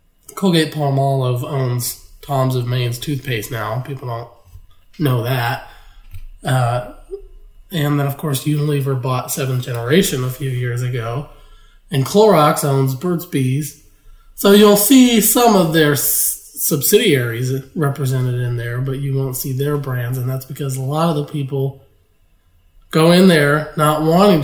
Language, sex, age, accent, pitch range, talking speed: English, male, 20-39, American, 125-155 Hz, 150 wpm